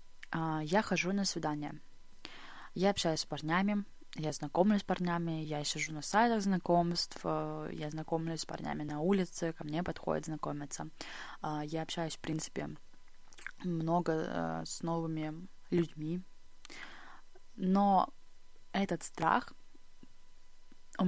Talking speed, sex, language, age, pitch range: 110 wpm, female, Russian, 20-39, 155-180 Hz